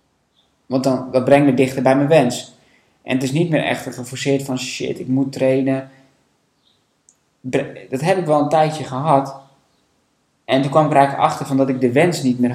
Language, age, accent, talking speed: Dutch, 20-39, Dutch, 190 wpm